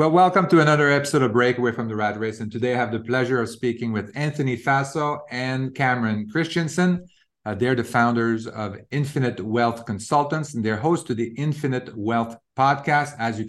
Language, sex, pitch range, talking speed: English, male, 110-140 Hz, 190 wpm